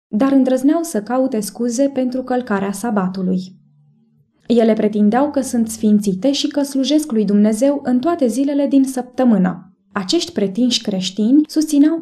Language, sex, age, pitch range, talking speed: English, female, 20-39, 205-260 Hz, 135 wpm